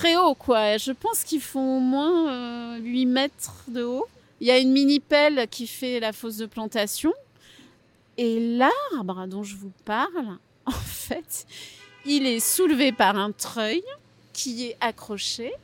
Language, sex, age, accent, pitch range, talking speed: French, female, 40-59, French, 205-270 Hz, 160 wpm